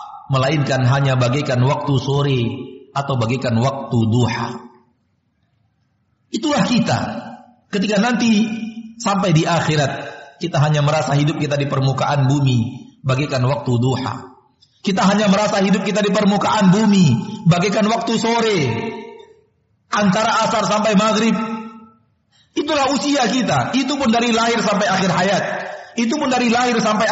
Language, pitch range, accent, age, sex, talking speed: Indonesian, 150-225 Hz, native, 50-69, male, 125 wpm